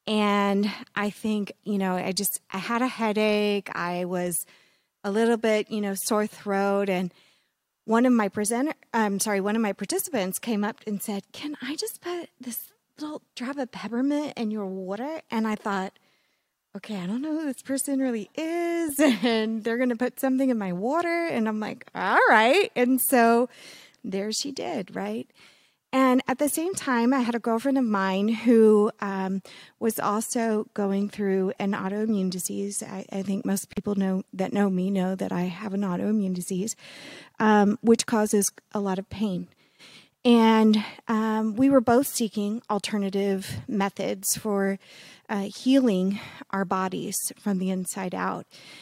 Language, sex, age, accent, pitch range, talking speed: English, female, 20-39, American, 200-245 Hz, 170 wpm